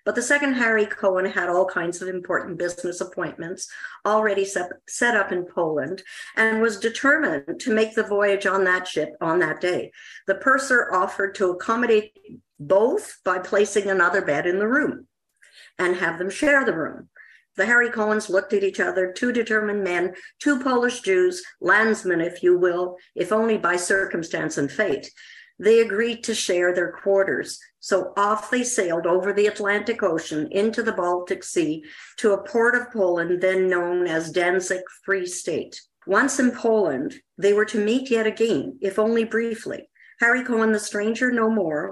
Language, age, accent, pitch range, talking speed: English, 50-69, American, 185-225 Hz, 170 wpm